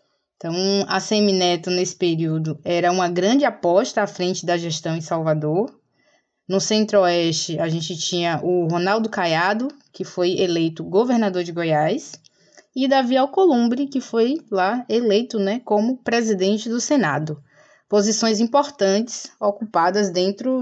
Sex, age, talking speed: female, 20-39, 130 wpm